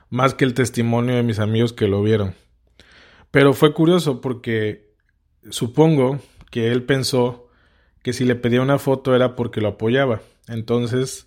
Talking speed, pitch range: 155 wpm, 115-135 Hz